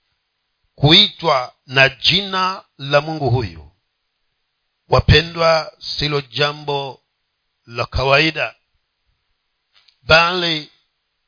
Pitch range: 120-165 Hz